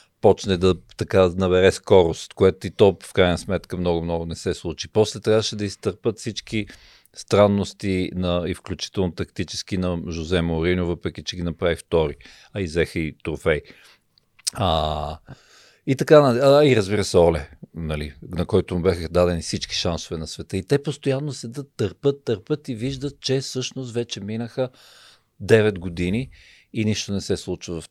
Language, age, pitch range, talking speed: Bulgarian, 50-69, 90-120 Hz, 165 wpm